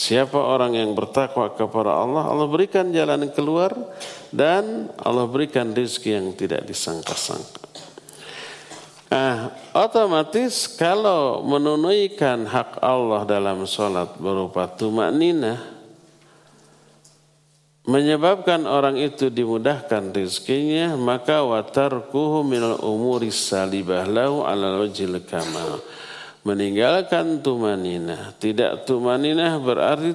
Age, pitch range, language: 50-69, 110-145 Hz, Indonesian